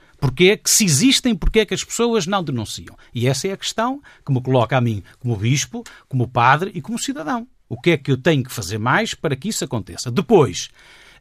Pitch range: 125-190 Hz